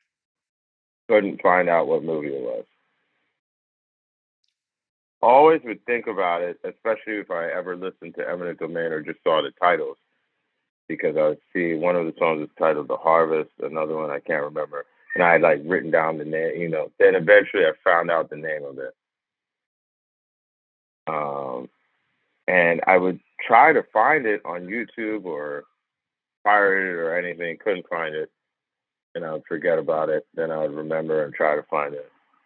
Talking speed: 175 wpm